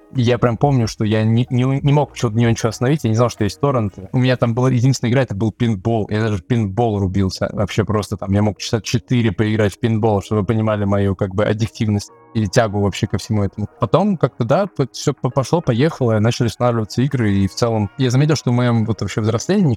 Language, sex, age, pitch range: Russian, male, 20-39, 105-125 Hz